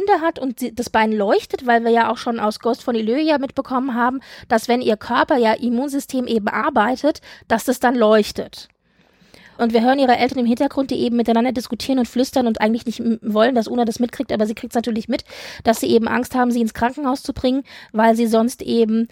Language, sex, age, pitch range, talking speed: German, female, 20-39, 230-275 Hz, 220 wpm